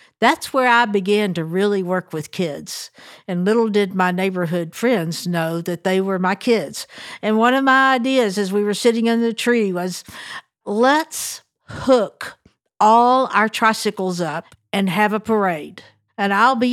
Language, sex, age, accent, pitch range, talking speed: English, female, 60-79, American, 180-230 Hz, 170 wpm